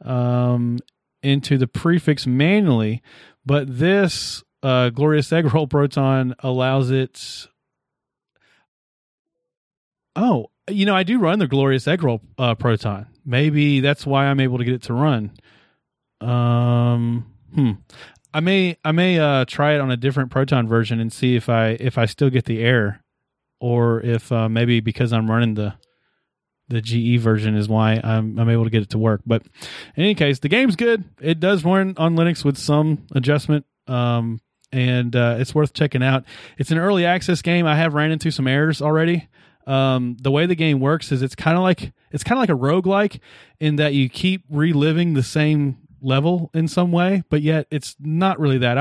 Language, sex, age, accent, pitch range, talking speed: English, male, 30-49, American, 120-160 Hz, 185 wpm